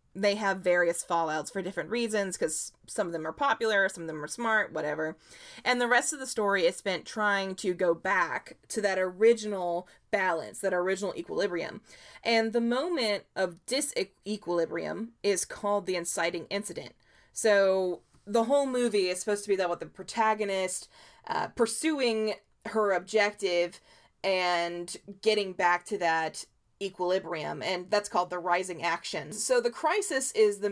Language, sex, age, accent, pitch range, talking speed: English, female, 20-39, American, 175-225 Hz, 160 wpm